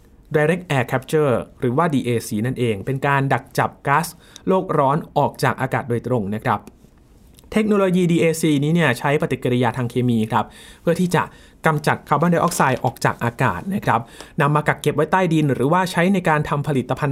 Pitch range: 120-160 Hz